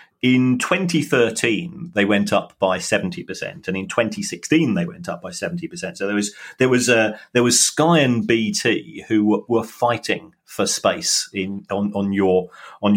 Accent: British